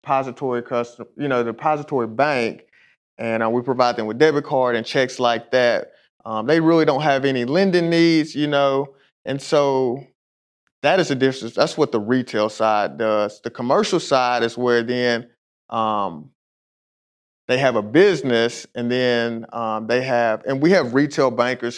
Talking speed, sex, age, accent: 170 wpm, male, 30-49, American